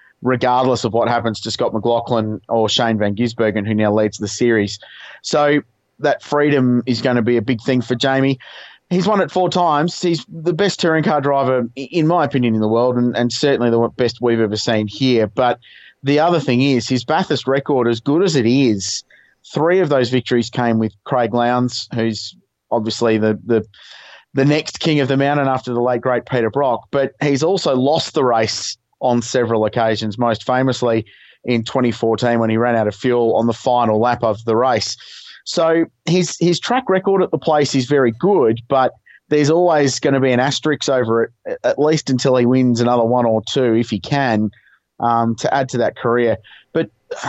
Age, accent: 30-49, Australian